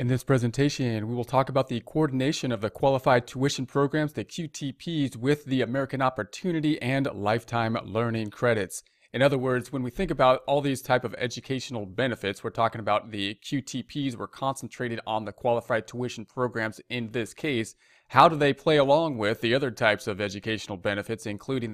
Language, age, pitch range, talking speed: English, 30-49, 110-135 Hz, 180 wpm